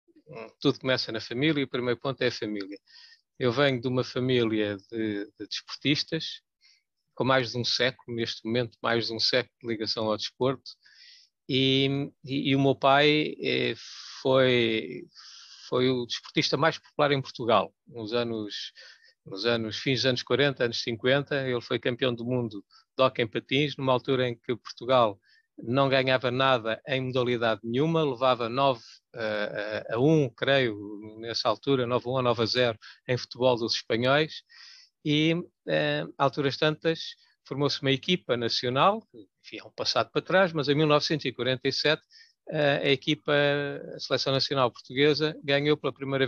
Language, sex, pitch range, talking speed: Portuguese, male, 120-150 Hz, 155 wpm